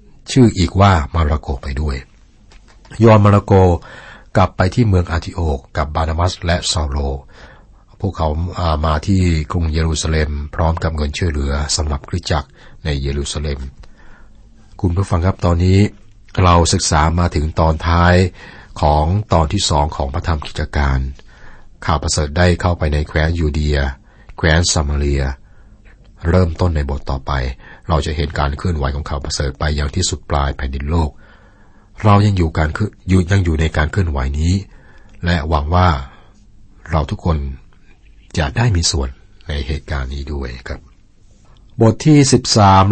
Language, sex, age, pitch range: Thai, male, 60-79, 75-95 Hz